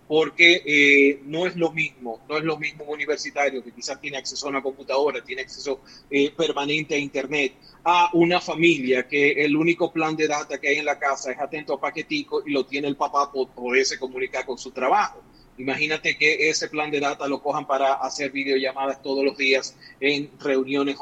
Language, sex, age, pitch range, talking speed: Spanish, male, 30-49, 140-170 Hz, 205 wpm